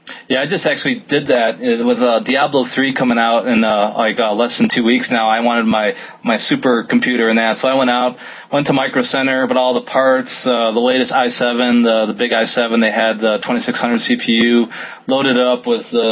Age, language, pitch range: 20-39, English, 110-125 Hz